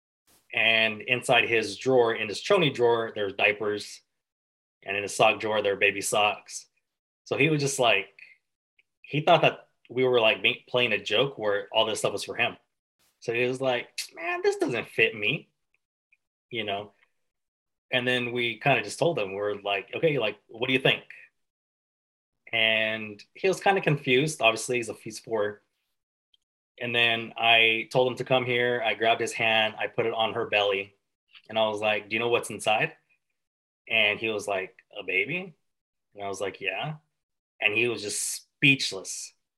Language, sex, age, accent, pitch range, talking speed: English, male, 20-39, American, 105-130 Hz, 185 wpm